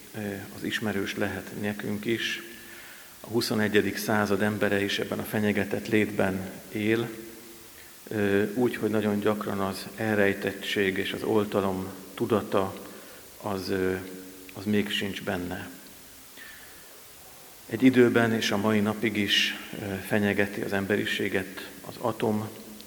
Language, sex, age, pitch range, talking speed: Hungarian, male, 50-69, 100-110 Hz, 110 wpm